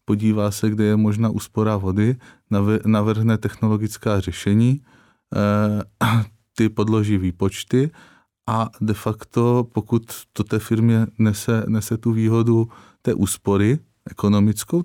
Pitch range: 100-120 Hz